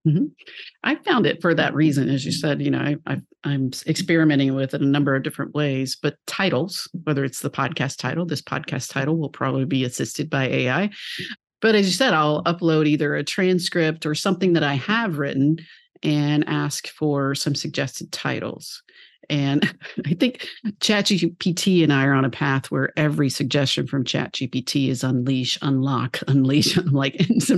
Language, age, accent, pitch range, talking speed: English, 50-69, American, 140-175 Hz, 185 wpm